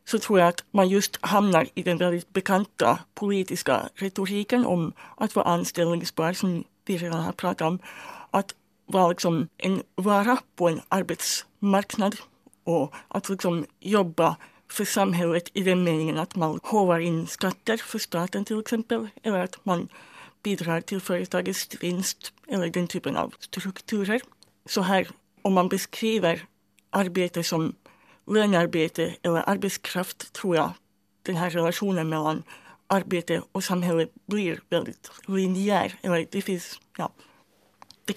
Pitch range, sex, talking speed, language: 170-200 Hz, female, 130 wpm, Finnish